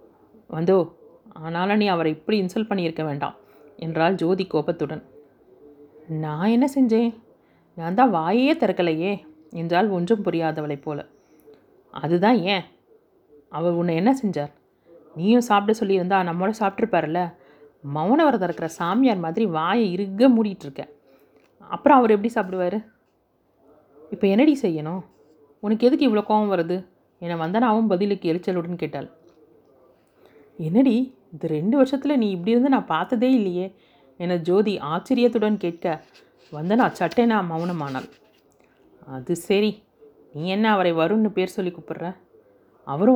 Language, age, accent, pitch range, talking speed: Tamil, 30-49, native, 165-225 Hz, 115 wpm